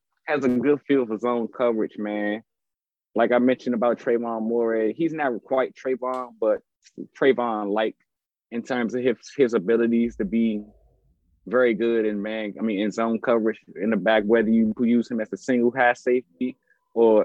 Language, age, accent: English, 20-39, American